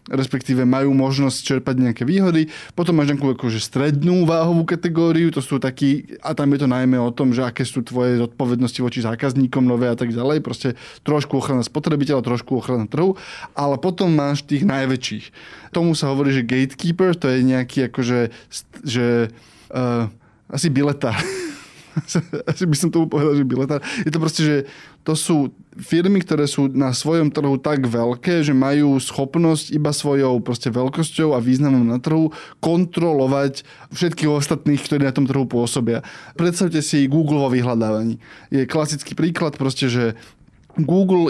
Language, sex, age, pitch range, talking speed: Slovak, male, 20-39, 130-160 Hz, 160 wpm